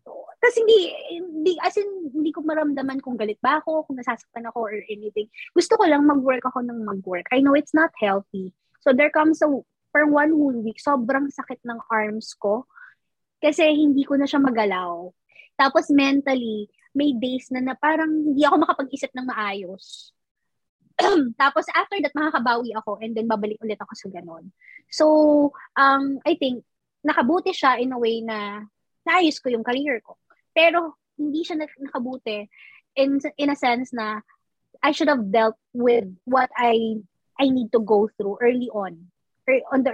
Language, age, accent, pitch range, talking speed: Filipino, 20-39, native, 215-285 Hz, 165 wpm